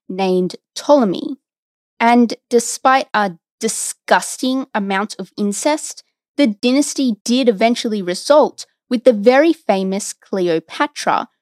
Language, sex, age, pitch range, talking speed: English, female, 20-39, 195-290 Hz, 100 wpm